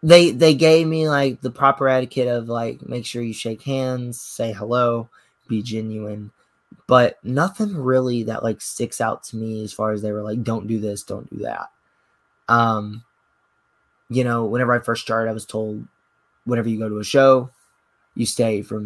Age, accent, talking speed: 20-39, American, 190 wpm